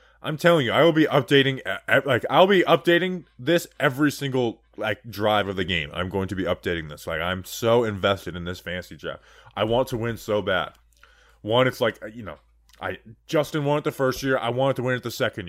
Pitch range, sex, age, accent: 105-140 Hz, male, 20-39, American